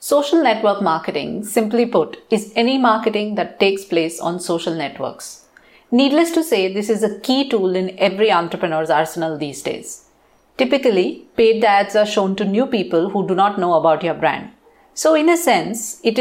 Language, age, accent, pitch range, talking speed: English, 50-69, Indian, 170-235 Hz, 180 wpm